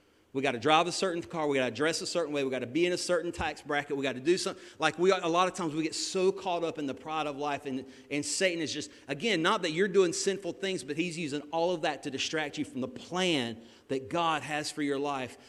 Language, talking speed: English, 290 wpm